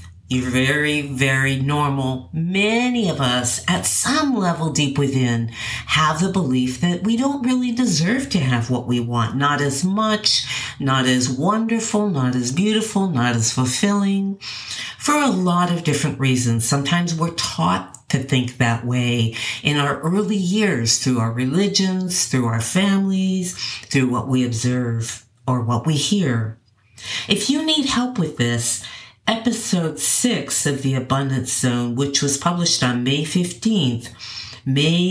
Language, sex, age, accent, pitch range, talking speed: English, female, 50-69, American, 120-180 Hz, 150 wpm